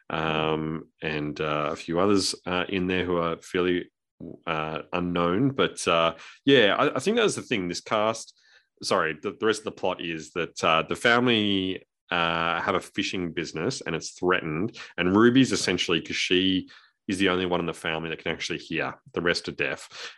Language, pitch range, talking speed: English, 80-90 Hz, 195 wpm